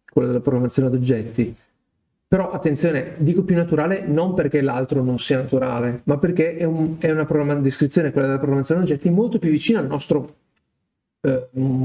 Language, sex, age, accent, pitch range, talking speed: Italian, male, 40-59, native, 135-175 Hz, 165 wpm